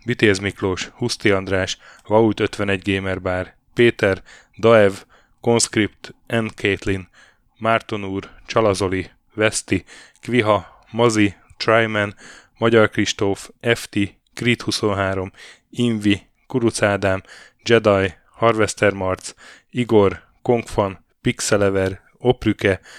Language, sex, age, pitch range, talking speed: Hungarian, male, 10-29, 95-115 Hz, 85 wpm